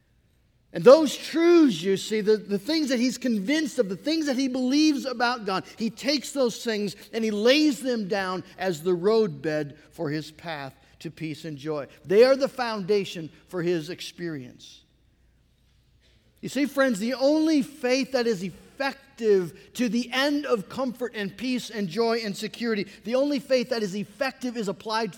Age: 50-69